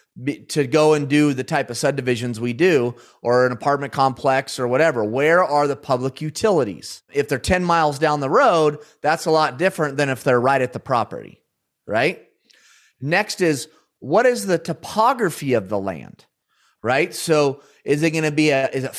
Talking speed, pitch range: 185 wpm, 145-200 Hz